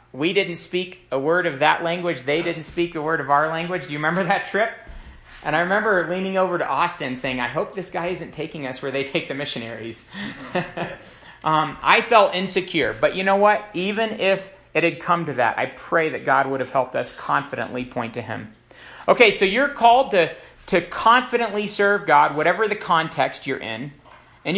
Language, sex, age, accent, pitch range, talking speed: English, male, 40-59, American, 145-200 Hz, 205 wpm